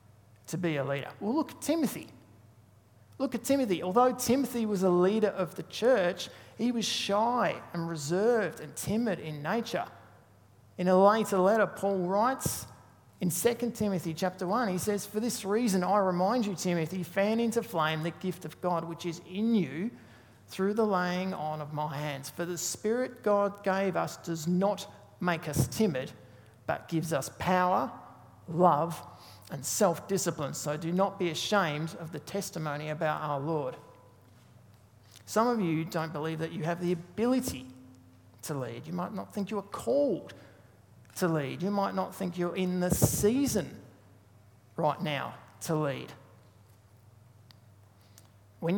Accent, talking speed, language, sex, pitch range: Australian, 160 wpm, English, male, 125-200 Hz